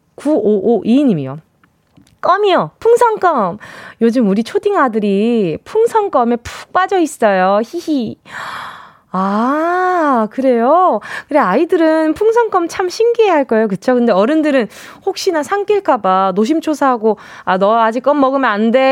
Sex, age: female, 20-39